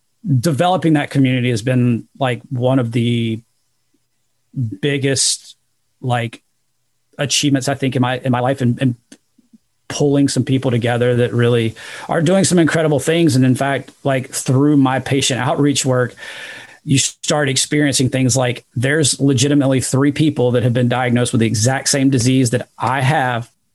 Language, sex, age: English, male, 30-49